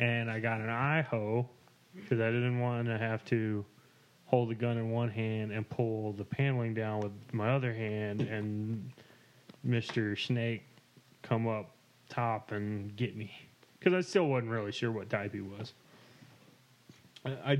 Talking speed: 160 wpm